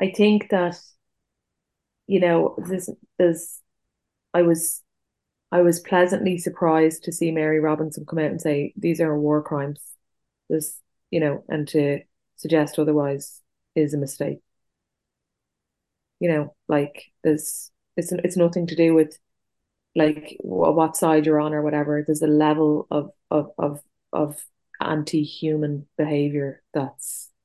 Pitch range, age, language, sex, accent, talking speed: 145-160 Hz, 20-39, English, female, Irish, 135 wpm